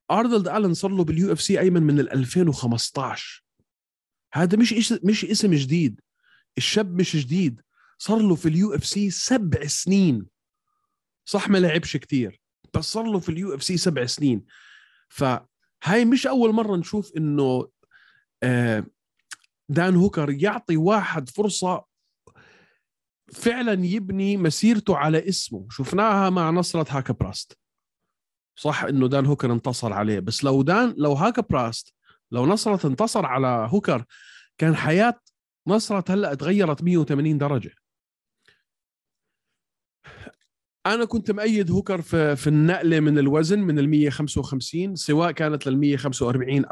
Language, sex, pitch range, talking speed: Arabic, male, 135-200 Hz, 130 wpm